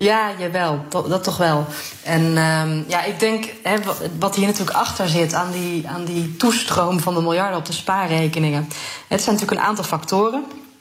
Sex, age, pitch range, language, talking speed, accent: female, 30-49, 165-205 Hz, Dutch, 185 wpm, Dutch